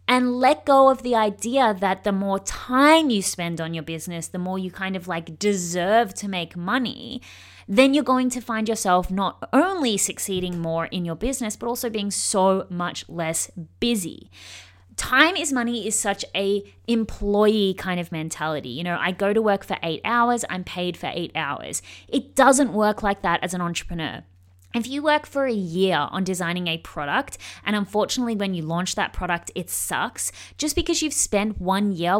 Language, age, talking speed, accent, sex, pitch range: English, 20-39, 190 wpm, Australian, female, 180-235 Hz